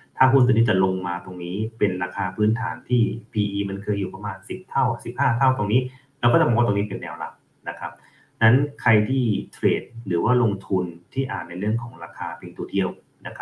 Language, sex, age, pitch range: Thai, male, 30-49, 95-120 Hz